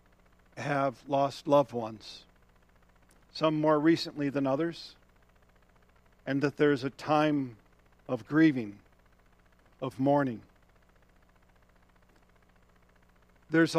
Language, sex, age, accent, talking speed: English, male, 50-69, American, 85 wpm